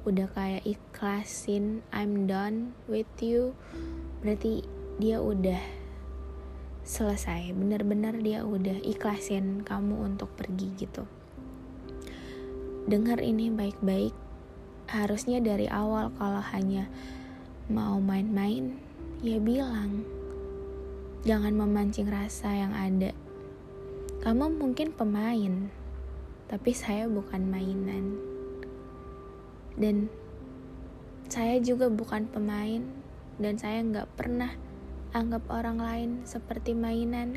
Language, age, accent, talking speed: Indonesian, 20-39, native, 90 wpm